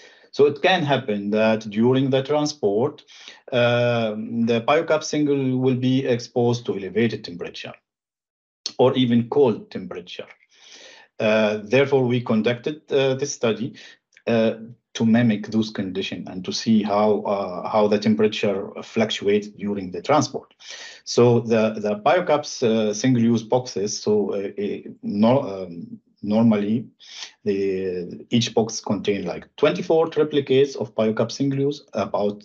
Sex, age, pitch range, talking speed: male, 50-69, 110-135 Hz, 125 wpm